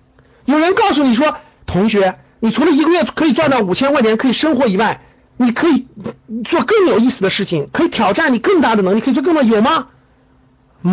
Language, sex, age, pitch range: Chinese, male, 50-69, 210-315 Hz